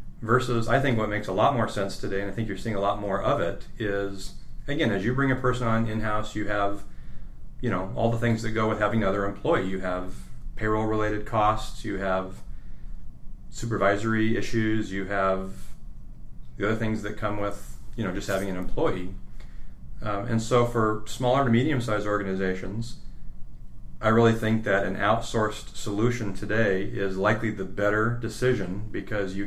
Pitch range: 100-115 Hz